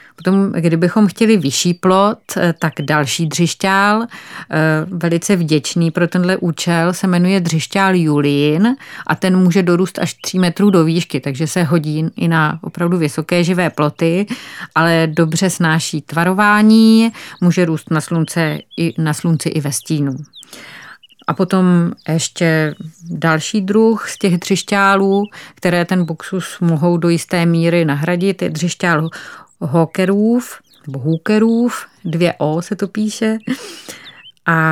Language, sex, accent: Czech, female, native